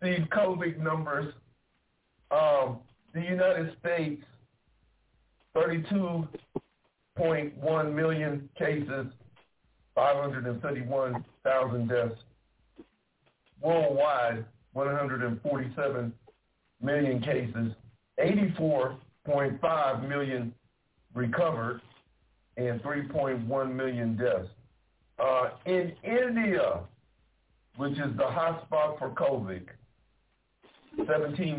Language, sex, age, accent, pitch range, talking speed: English, male, 50-69, American, 125-160 Hz, 65 wpm